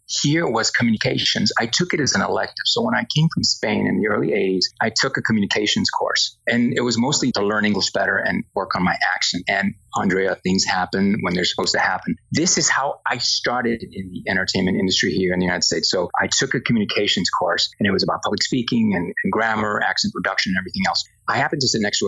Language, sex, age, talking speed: English, male, 30-49, 235 wpm